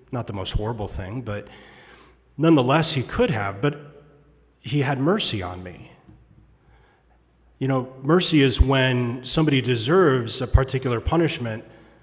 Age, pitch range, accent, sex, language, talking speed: 30-49, 110-145 Hz, American, male, English, 130 wpm